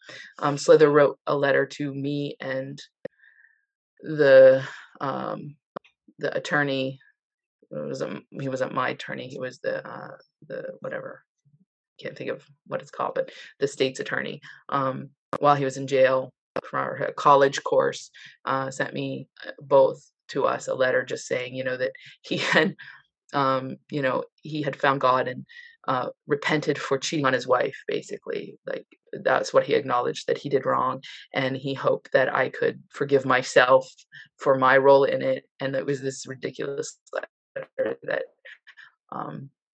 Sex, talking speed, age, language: female, 160 wpm, 20-39, English